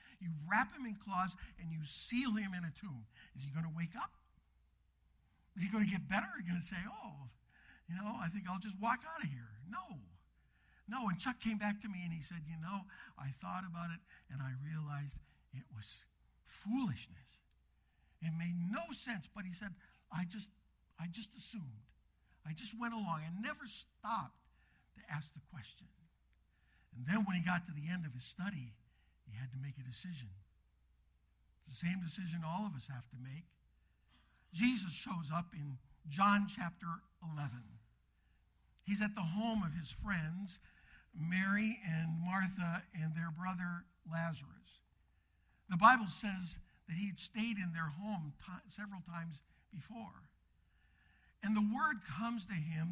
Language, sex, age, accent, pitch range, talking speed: English, male, 60-79, American, 120-195 Hz, 175 wpm